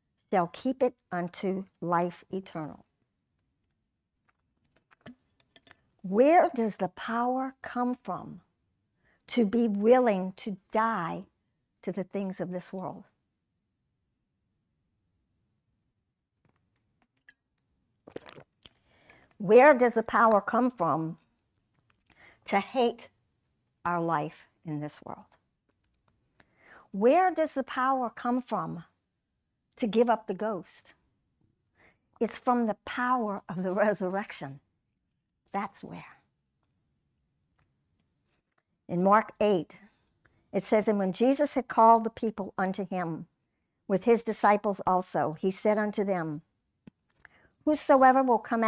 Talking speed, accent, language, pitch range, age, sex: 100 wpm, American, English, 185-240 Hz, 50-69, male